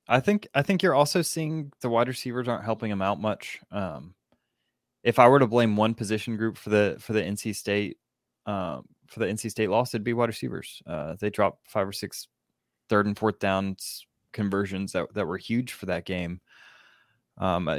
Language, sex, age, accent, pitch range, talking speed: English, male, 20-39, American, 100-120 Hz, 200 wpm